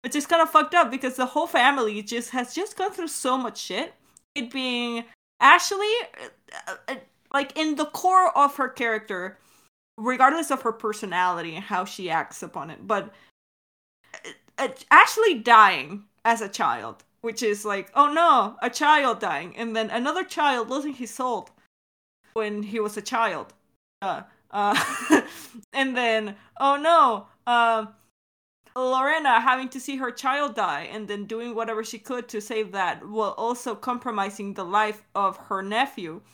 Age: 20-39